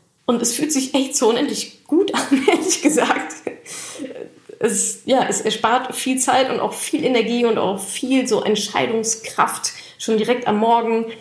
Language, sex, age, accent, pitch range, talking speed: German, female, 10-29, German, 195-260 Hz, 160 wpm